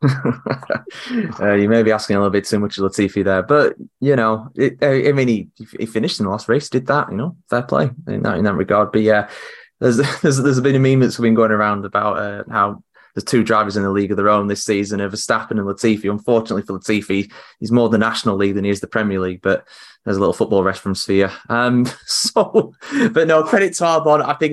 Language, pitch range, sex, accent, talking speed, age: English, 110-145 Hz, male, British, 235 wpm, 20-39